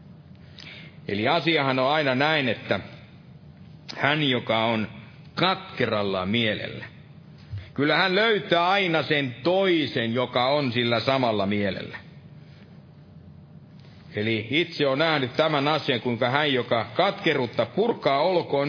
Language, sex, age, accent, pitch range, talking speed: Finnish, male, 50-69, native, 125-165 Hz, 110 wpm